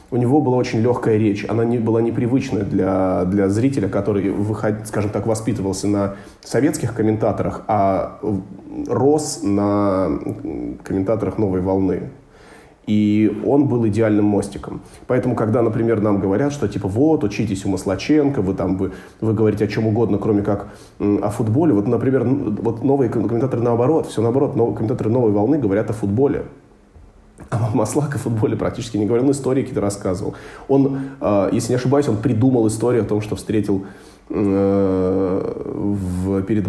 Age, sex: 20-39, male